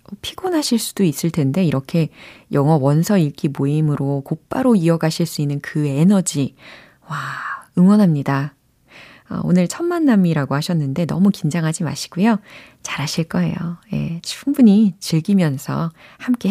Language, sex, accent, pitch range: Korean, female, native, 155-245 Hz